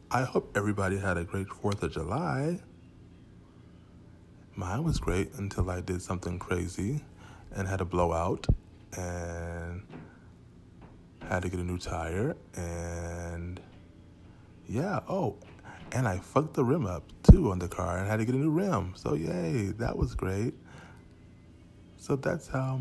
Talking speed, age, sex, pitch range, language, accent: 145 wpm, 20-39, male, 85-100 Hz, English, American